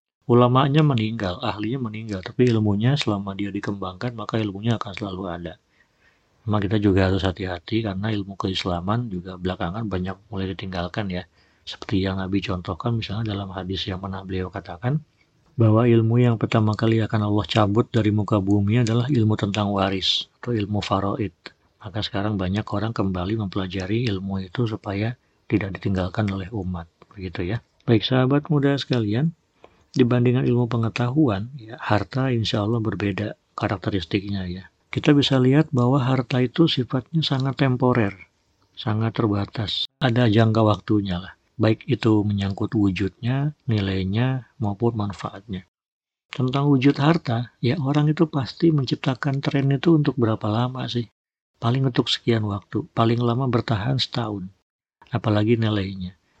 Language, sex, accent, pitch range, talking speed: Indonesian, male, native, 100-125 Hz, 140 wpm